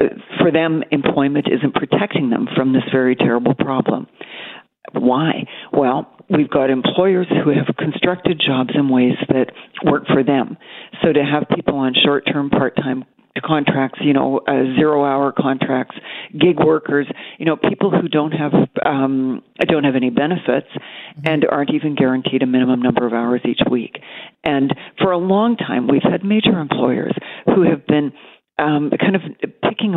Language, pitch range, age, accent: English, 140-180 Hz, 50-69, American